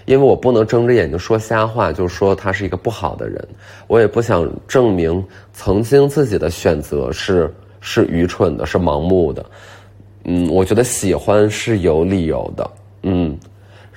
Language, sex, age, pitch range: Chinese, male, 20-39, 85-105 Hz